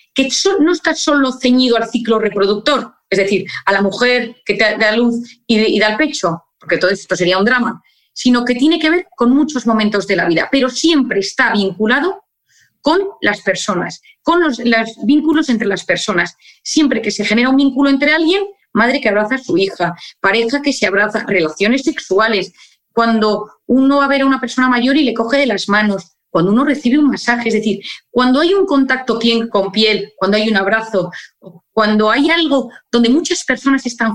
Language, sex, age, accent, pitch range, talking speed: Spanish, female, 30-49, Spanish, 210-280 Hz, 200 wpm